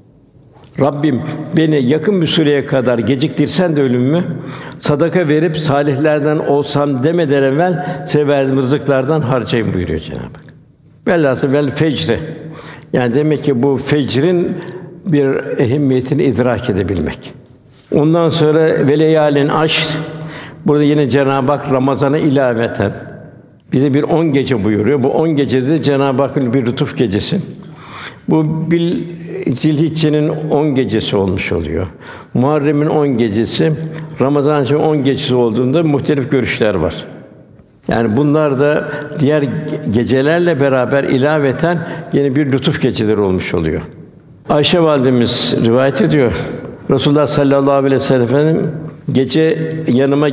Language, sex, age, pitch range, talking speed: Turkish, male, 60-79, 135-155 Hz, 115 wpm